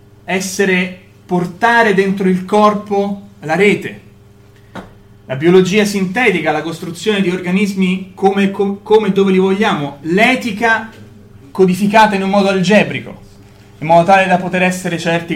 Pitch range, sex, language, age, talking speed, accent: 130-190 Hz, male, Italian, 30-49, 125 wpm, native